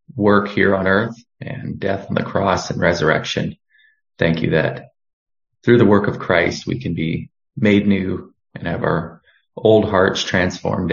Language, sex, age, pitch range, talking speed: English, male, 30-49, 90-110 Hz, 165 wpm